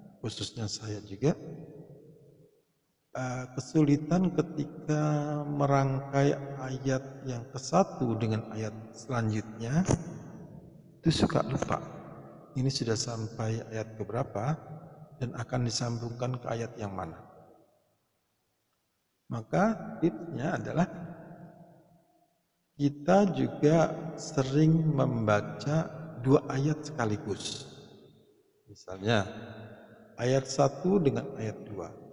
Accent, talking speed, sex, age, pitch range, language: native, 80 wpm, male, 50-69, 115-160 Hz, Indonesian